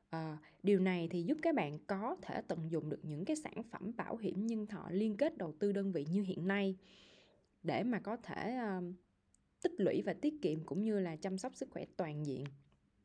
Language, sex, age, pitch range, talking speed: Vietnamese, female, 20-39, 175-230 Hz, 210 wpm